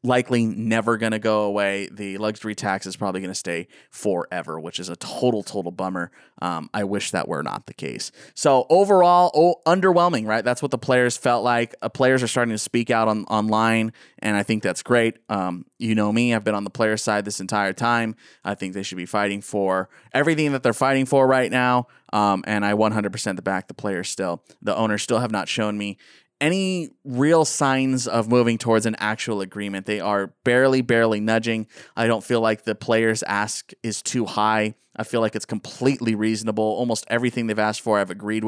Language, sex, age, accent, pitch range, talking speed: English, male, 20-39, American, 105-125 Hz, 210 wpm